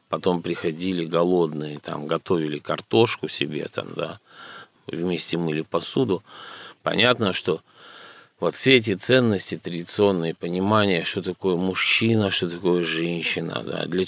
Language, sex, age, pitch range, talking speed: Russian, male, 50-69, 85-105 Hz, 120 wpm